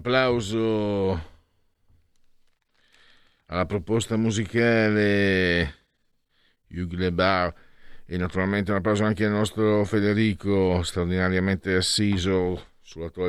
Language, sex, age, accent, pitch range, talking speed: Italian, male, 50-69, native, 85-115 Hz, 70 wpm